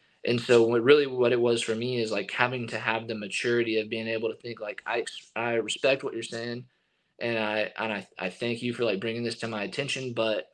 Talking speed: 245 wpm